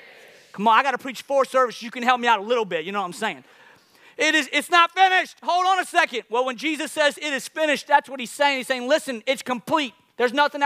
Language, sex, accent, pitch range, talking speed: English, male, American, 175-255 Hz, 265 wpm